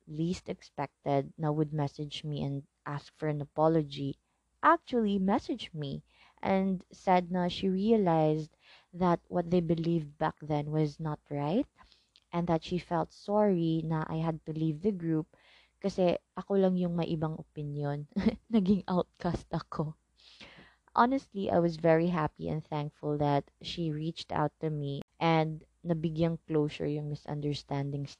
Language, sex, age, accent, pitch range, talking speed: English, female, 20-39, Filipino, 150-190 Hz, 145 wpm